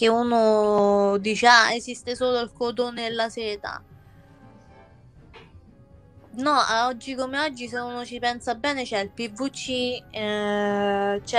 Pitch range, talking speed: 205-240 Hz, 130 wpm